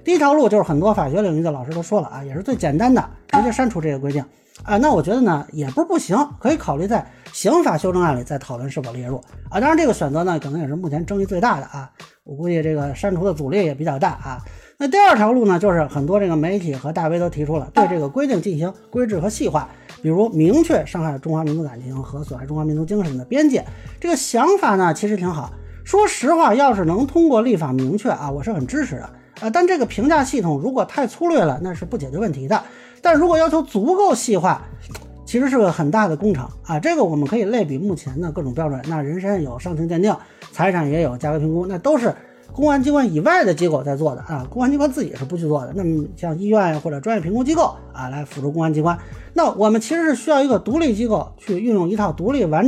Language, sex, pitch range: Chinese, male, 150-230 Hz